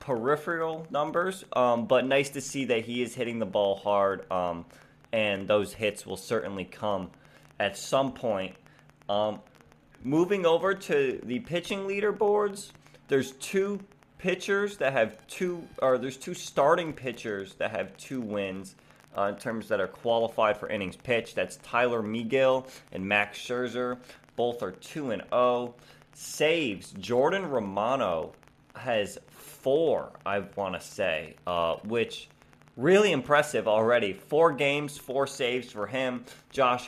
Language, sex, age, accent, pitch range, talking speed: English, male, 20-39, American, 110-145 Hz, 140 wpm